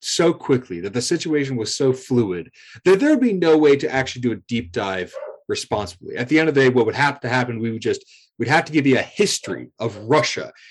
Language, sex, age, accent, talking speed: English, male, 30-49, American, 240 wpm